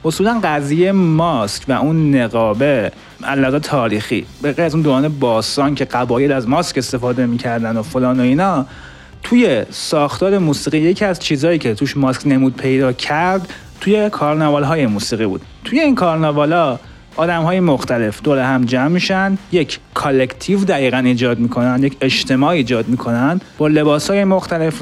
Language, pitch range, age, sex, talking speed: Persian, 130-185 Hz, 30-49, male, 155 wpm